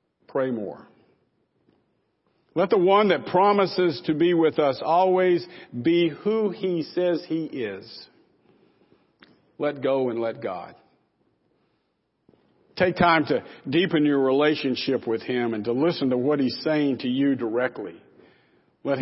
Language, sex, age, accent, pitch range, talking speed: English, male, 50-69, American, 125-155 Hz, 135 wpm